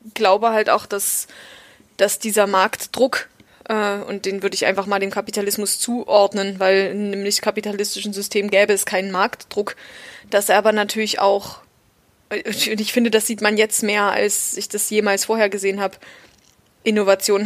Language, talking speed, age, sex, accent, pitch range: German, 165 wpm, 20-39, female, German, 195-225 Hz